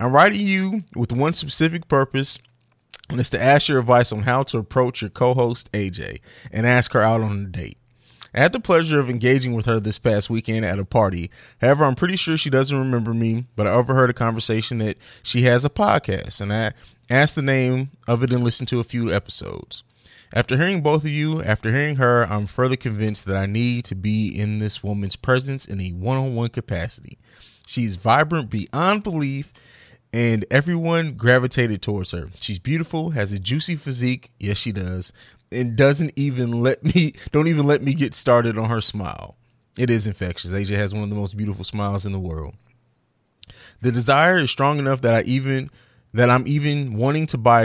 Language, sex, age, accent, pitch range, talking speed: English, male, 20-39, American, 105-135 Hz, 195 wpm